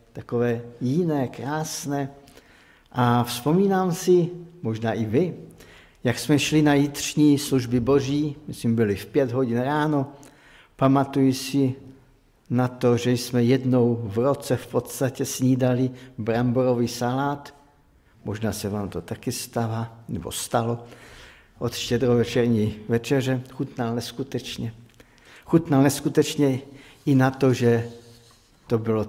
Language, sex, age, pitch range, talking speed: Czech, male, 50-69, 115-135 Hz, 120 wpm